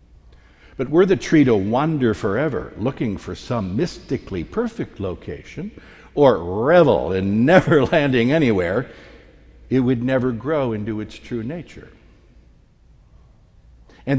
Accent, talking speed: American, 120 wpm